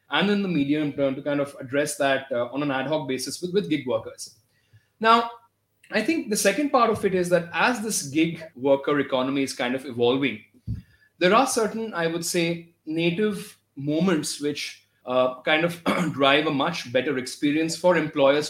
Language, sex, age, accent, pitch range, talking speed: English, male, 30-49, Indian, 135-185 Hz, 190 wpm